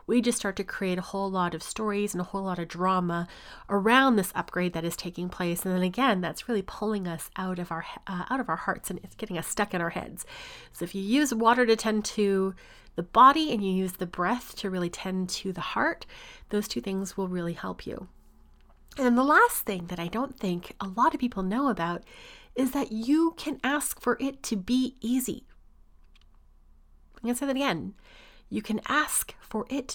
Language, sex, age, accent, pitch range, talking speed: English, female, 30-49, American, 185-245 Hz, 220 wpm